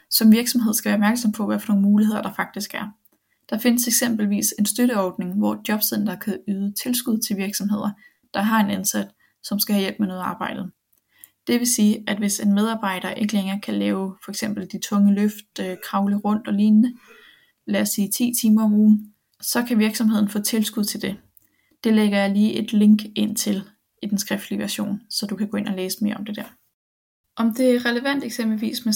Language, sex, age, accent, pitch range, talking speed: Danish, female, 20-39, native, 205-225 Hz, 200 wpm